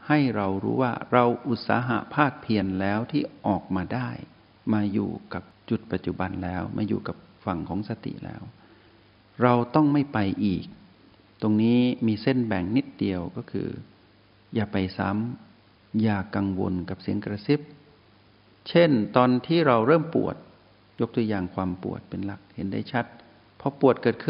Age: 60-79